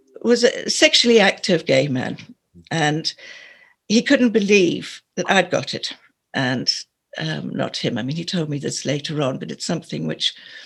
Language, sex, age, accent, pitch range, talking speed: English, female, 60-79, British, 155-235 Hz, 170 wpm